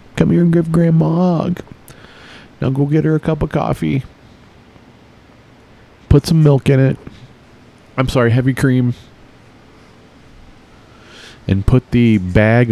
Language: English